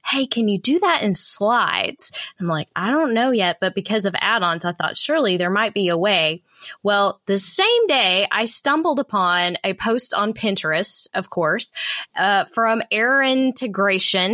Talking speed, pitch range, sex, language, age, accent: 175 wpm, 185-235 Hz, female, English, 10-29, American